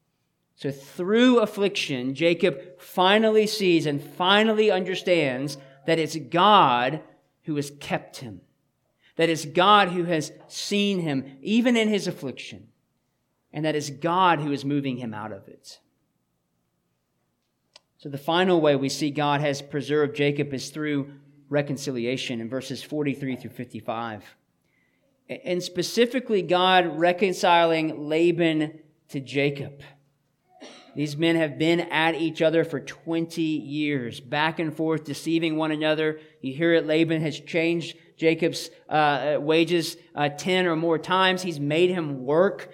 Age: 40-59